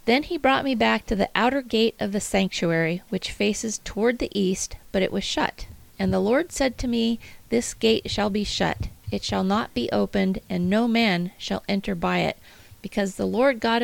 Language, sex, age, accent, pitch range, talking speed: English, female, 40-59, American, 180-230 Hz, 210 wpm